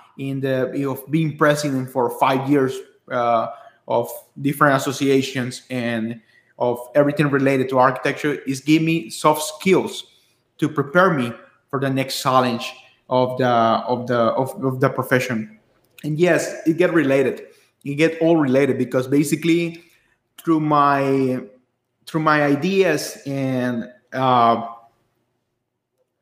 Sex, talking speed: male, 130 wpm